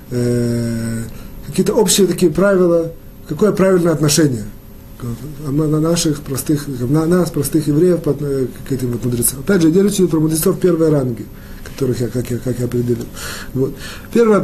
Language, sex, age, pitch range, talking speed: Russian, male, 30-49, 135-180 Hz, 150 wpm